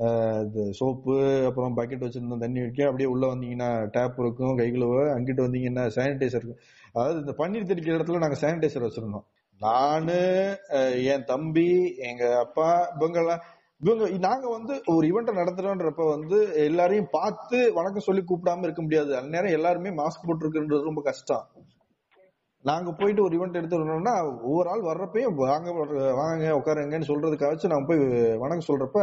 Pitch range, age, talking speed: 130-185 Hz, 30-49, 140 wpm